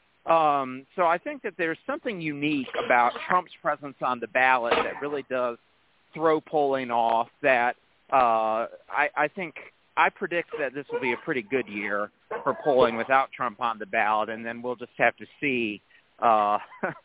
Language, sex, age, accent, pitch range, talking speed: English, male, 40-59, American, 120-175 Hz, 175 wpm